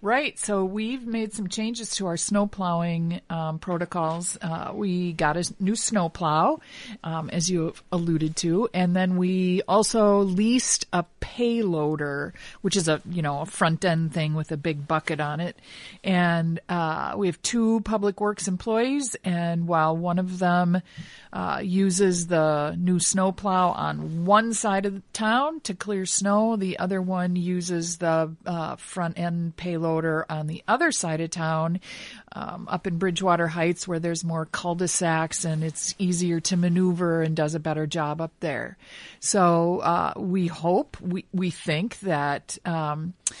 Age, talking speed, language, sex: 50-69, 165 wpm, English, female